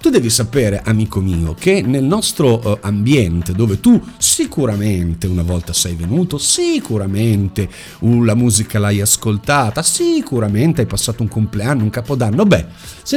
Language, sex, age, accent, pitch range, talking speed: Italian, male, 50-69, native, 95-135 Hz, 135 wpm